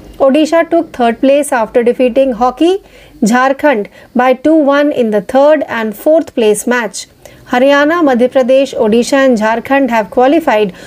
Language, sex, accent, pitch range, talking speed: Marathi, female, native, 245-300 Hz, 140 wpm